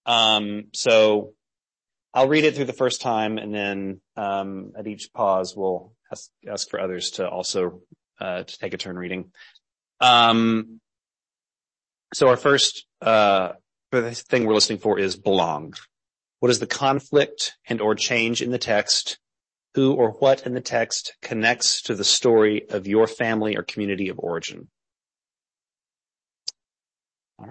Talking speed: 145 wpm